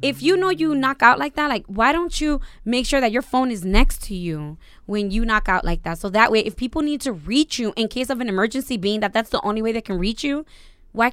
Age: 20-39